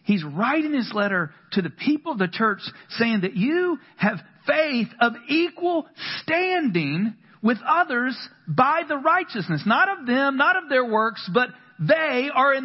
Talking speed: 160 wpm